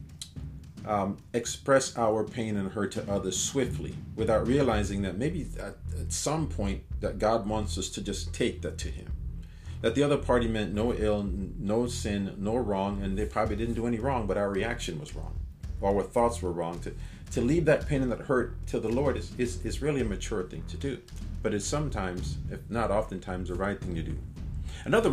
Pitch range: 90-115 Hz